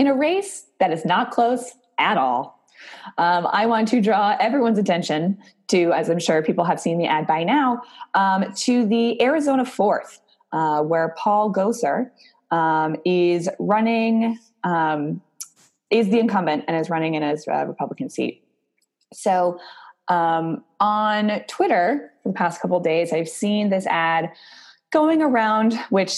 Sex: female